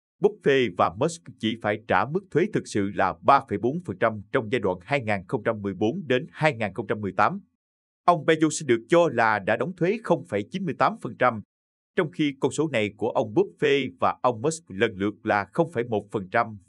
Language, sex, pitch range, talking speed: Vietnamese, male, 100-145 Hz, 150 wpm